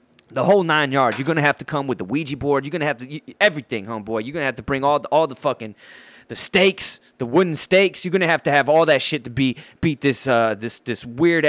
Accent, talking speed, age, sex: American, 265 wpm, 20-39, male